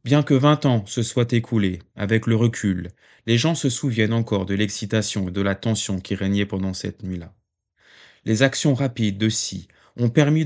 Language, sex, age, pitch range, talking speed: French, male, 30-49, 95-115 Hz, 190 wpm